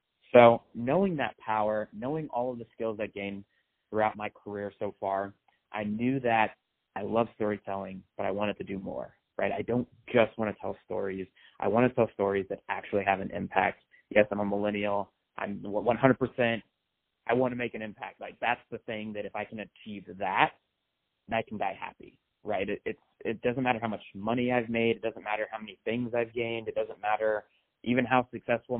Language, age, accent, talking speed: English, 30-49, American, 205 wpm